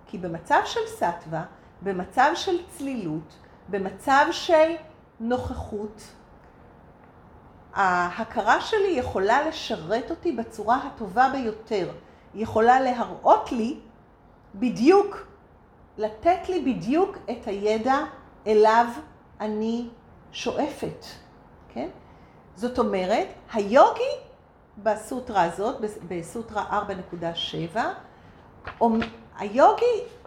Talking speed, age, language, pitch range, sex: 80 wpm, 50-69, Hebrew, 205-345 Hz, female